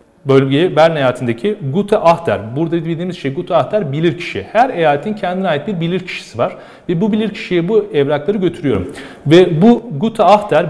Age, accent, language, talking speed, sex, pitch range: 40-59, native, Turkish, 170 wpm, male, 140-195 Hz